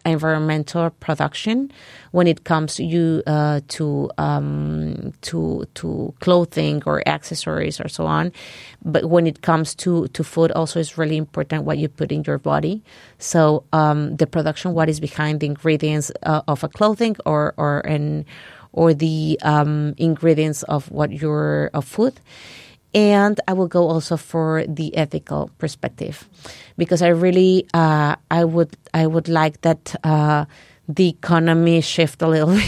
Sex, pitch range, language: female, 150-170 Hz, Swedish